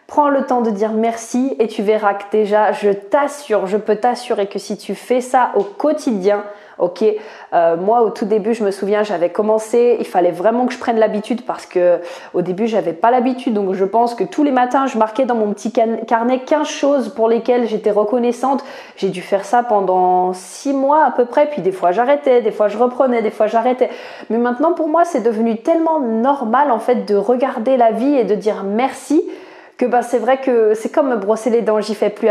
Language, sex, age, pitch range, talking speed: French, female, 20-39, 210-255 Hz, 225 wpm